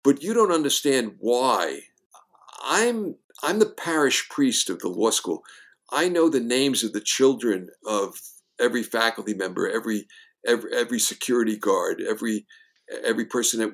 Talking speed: 150 wpm